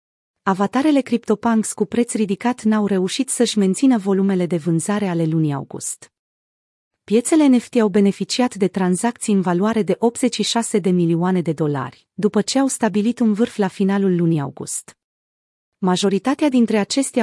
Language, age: Romanian, 30-49